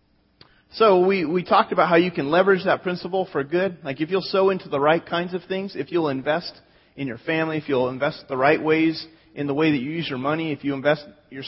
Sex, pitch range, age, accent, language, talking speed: male, 150-185 Hz, 30-49, American, English, 245 wpm